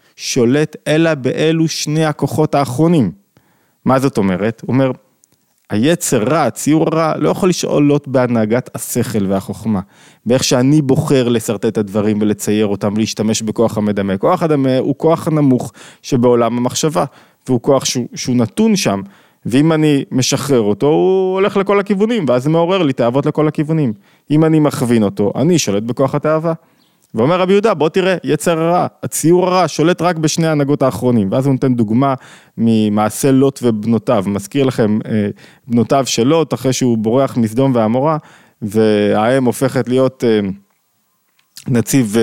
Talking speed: 150 wpm